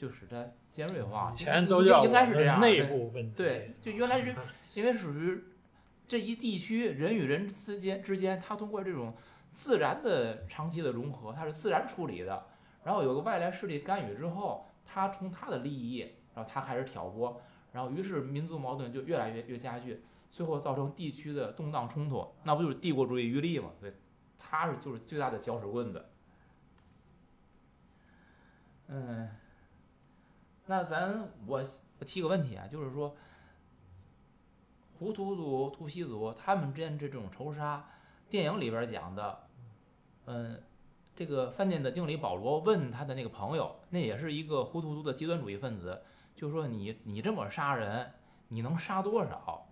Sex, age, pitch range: male, 20-39, 115-170 Hz